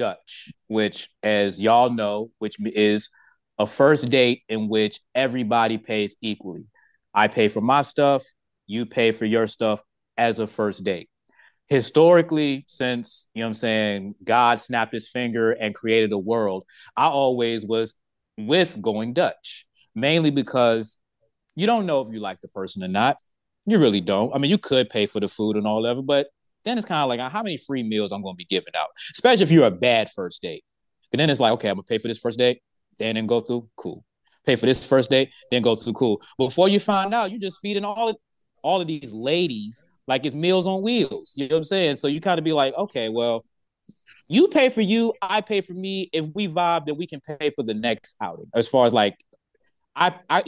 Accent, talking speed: American, 215 wpm